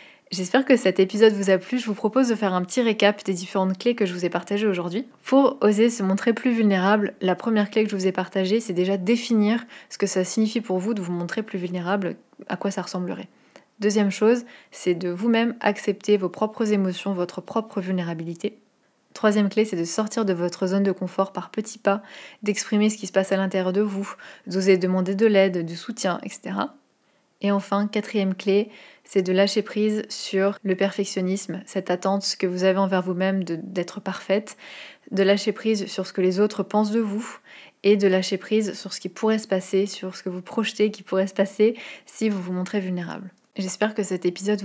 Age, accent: 20-39, French